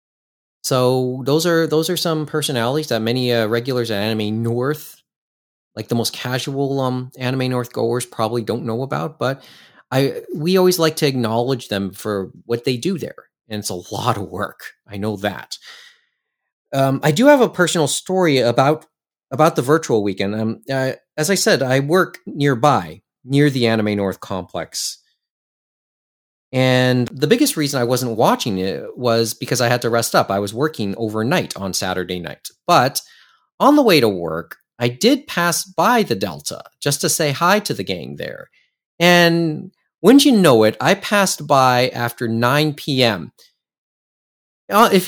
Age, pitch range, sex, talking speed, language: 30-49, 115-160 Hz, male, 170 wpm, English